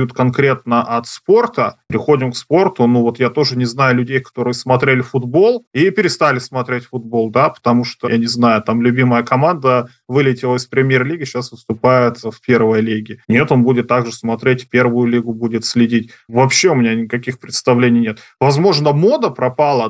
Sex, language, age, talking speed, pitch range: male, Russian, 20-39, 170 wpm, 120-140 Hz